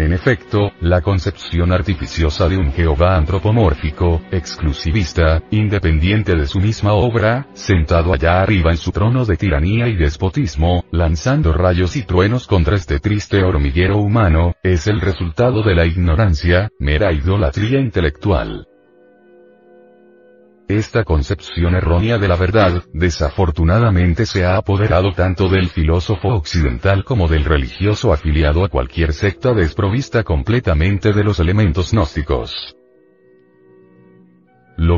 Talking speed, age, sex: 120 wpm, 40-59, male